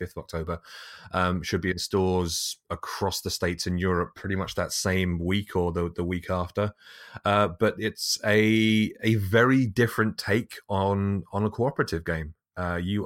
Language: English